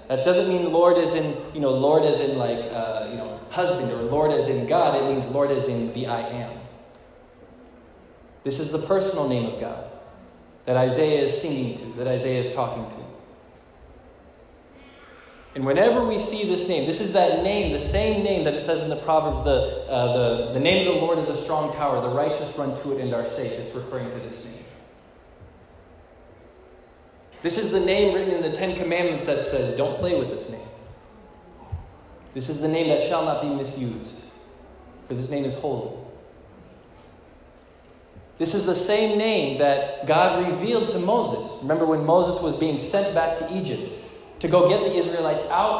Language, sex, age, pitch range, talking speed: English, male, 20-39, 130-180 Hz, 190 wpm